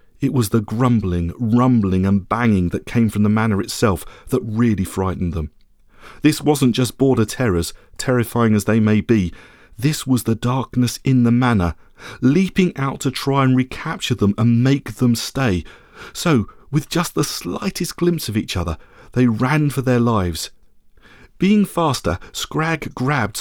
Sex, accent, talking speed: male, British, 160 wpm